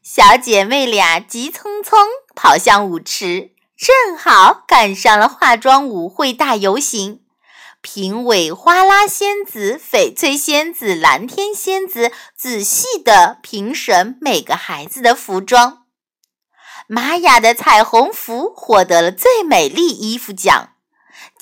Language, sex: Chinese, female